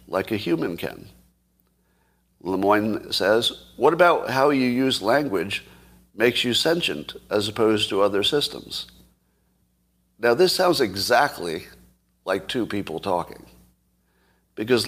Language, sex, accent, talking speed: English, male, American, 115 wpm